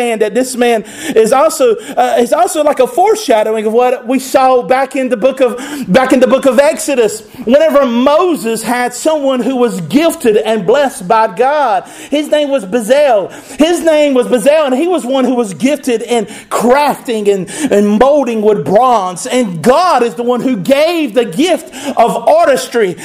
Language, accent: English, American